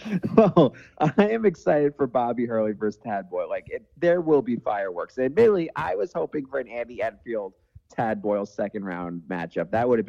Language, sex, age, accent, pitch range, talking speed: English, male, 30-49, American, 95-125 Hz, 185 wpm